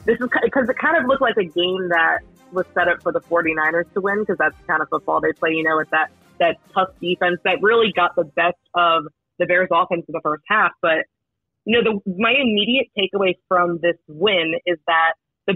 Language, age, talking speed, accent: English, 20-39, 240 wpm, American